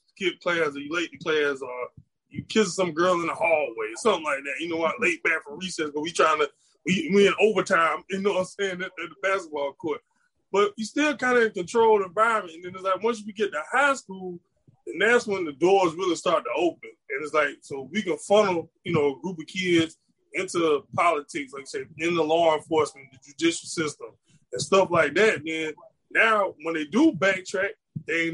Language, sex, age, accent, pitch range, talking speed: English, male, 20-39, American, 160-215 Hz, 235 wpm